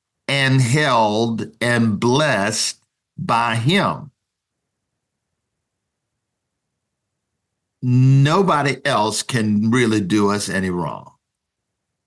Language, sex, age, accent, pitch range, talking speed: English, male, 50-69, American, 115-145 Hz, 70 wpm